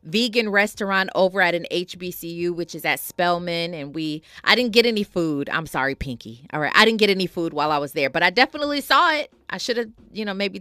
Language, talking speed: English, 240 wpm